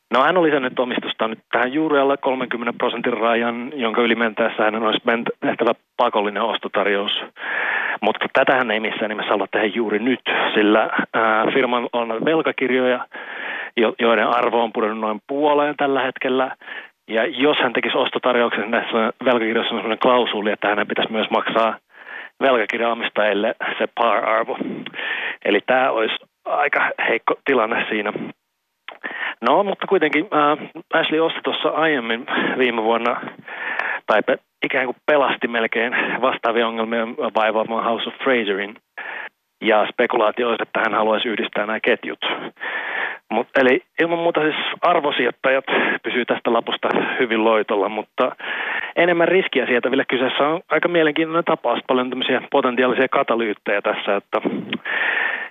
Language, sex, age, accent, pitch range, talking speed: Finnish, male, 30-49, native, 115-150 Hz, 135 wpm